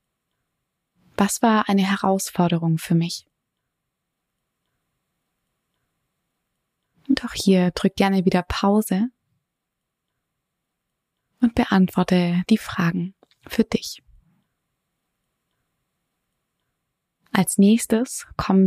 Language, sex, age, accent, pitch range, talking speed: German, female, 20-39, German, 180-210 Hz, 70 wpm